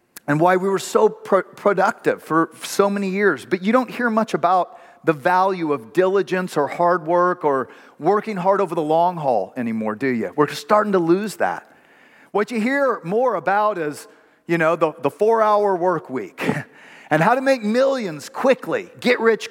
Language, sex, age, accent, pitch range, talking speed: English, male, 40-59, American, 155-205 Hz, 185 wpm